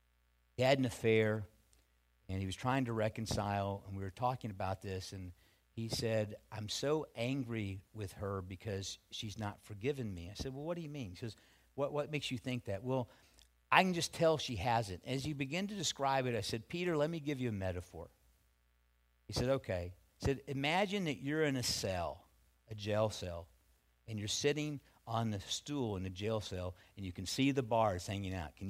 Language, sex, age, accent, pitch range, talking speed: English, male, 50-69, American, 95-140 Hz, 210 wpm